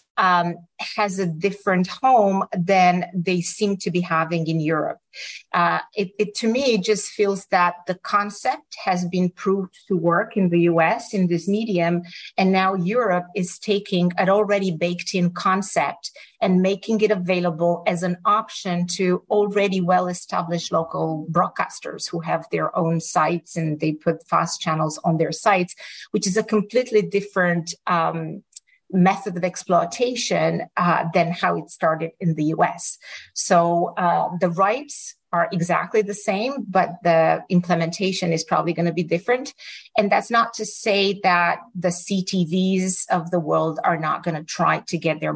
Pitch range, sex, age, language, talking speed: 170-200 Hz, female, 40-59, English, 165 wpm